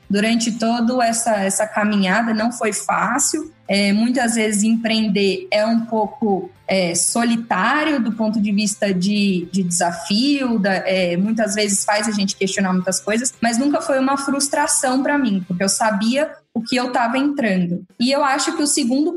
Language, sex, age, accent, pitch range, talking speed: Portuguese, female, 10-29, Brazilian, 215-260 Hz, 160 wpm